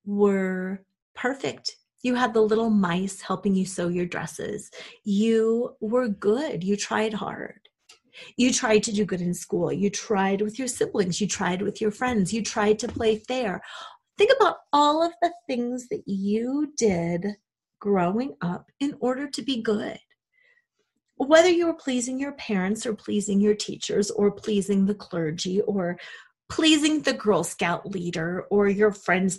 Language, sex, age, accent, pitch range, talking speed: English, female, 30-49, American, 195-255 Hz, 160 wpm